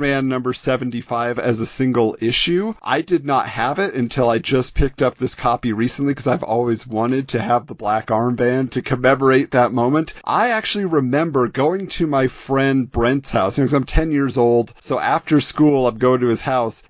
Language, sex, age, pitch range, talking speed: English, male, 40-59, 120-145 Hz, 190 wpm